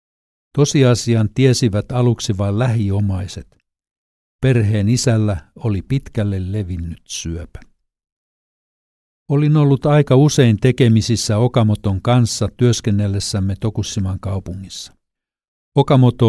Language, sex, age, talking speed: Finnish, male, 60-79, 80 wpm